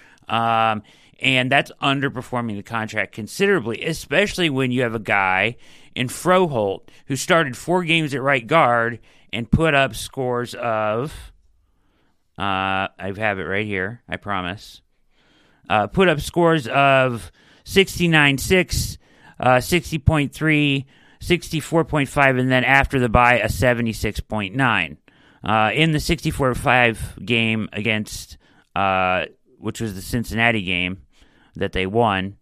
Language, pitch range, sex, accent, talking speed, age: English, 100-140 Hz, male, American, 120 wpm, 40-59